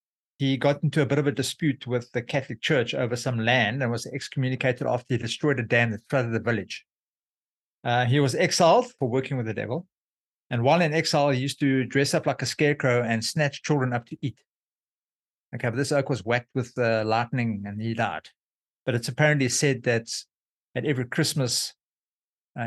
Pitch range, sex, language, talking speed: 120-145 Hz, male, English, 200 wpm